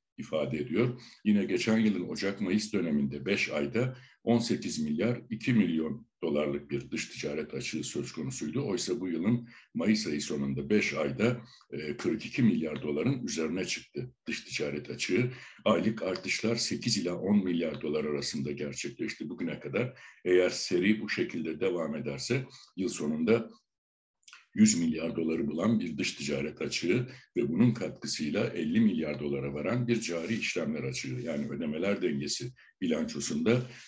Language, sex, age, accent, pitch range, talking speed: Turkish, male, 60-79, native, 80-120 Hz, 140 wpm